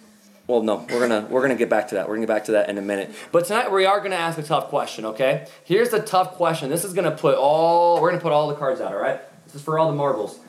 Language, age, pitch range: English, 20-39, 120-165 Hz